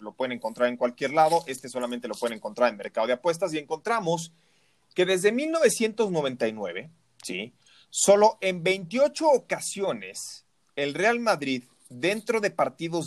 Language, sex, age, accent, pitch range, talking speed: Spanish, male, 30-49, Mexican, 125-180 Hz, 140 wpm